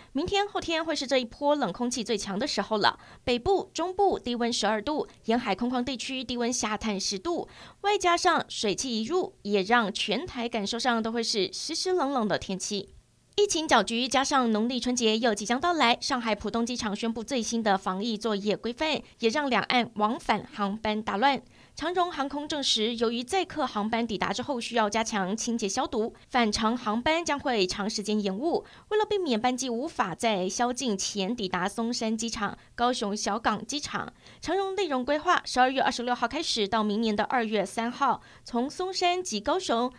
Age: 20-39